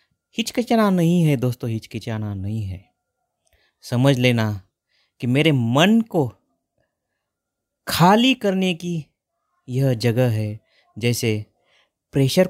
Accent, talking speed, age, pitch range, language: native, 100 wpm, 30-49, 110-165 Hz, Marathi